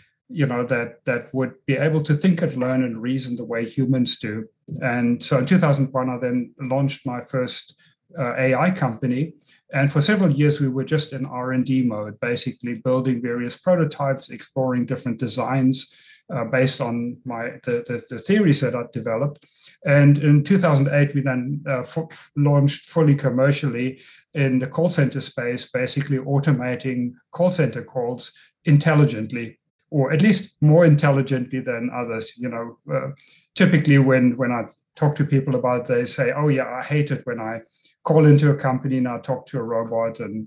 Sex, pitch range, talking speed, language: male, 125-150 Hz, 175 wpm, English